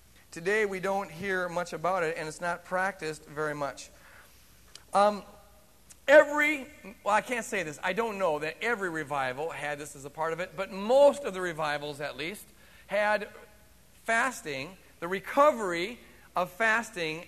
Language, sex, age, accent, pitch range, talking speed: English, male, 40-59, American, 165-215 Hz, 160 wpm